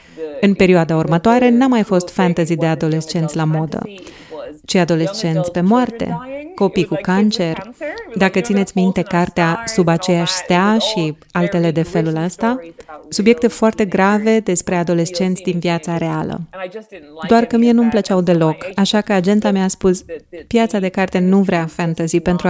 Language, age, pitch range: Romanian, 30-49, 175-215 Hz